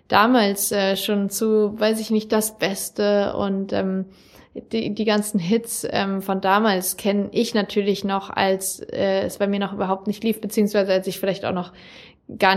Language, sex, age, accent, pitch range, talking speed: German, female, 20-39, German, 195-220 Hz, 180 wpm